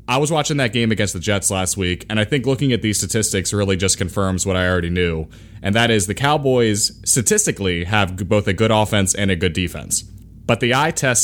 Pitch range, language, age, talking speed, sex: 100-120 Hz, English, 30-49, 230 wpm, male